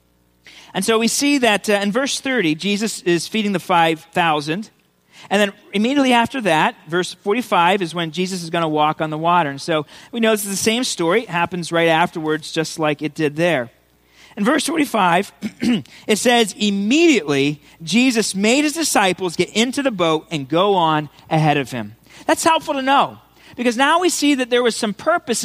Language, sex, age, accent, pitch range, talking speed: English, male, 40-59, American, 170-240 Hz, 195 wpm